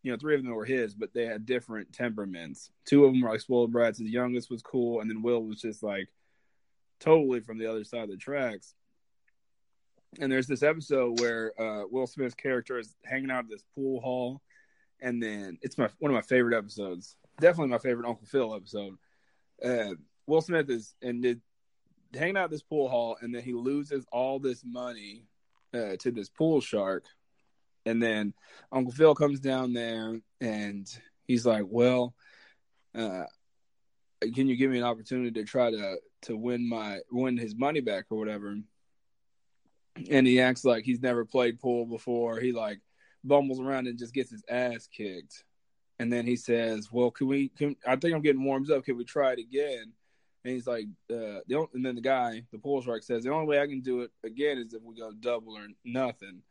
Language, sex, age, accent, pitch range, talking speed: English, male, 20-39, American, 115-130 Hz, 200 wpm